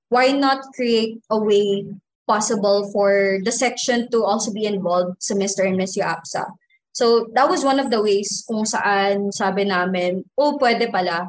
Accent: native